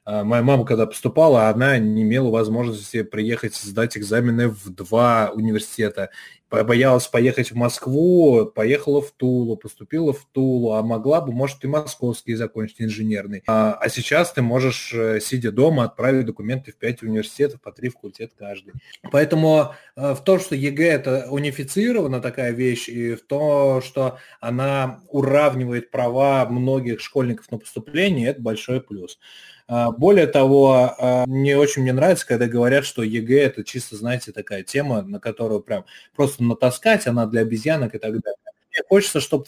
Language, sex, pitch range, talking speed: Russian, male, 115-140 Hz, 150 wpm